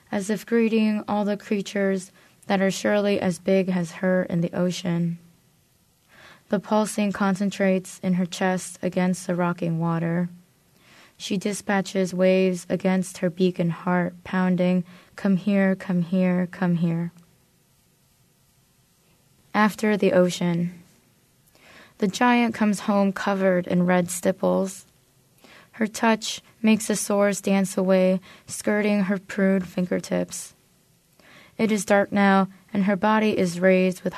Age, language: 20-39, English